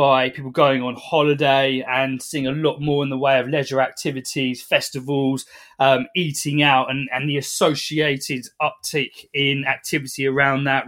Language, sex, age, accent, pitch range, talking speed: English, male, 20-39, British, 135-170 Hz, 160 wpm